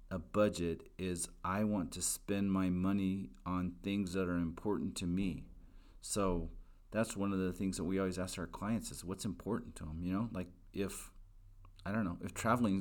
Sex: male